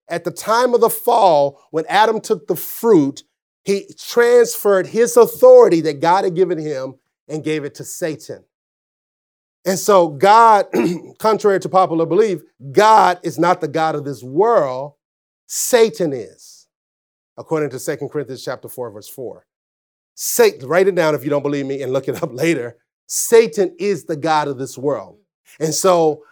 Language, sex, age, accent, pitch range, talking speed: English, male, 40-59, American, 150-200 Hz, 165 wpm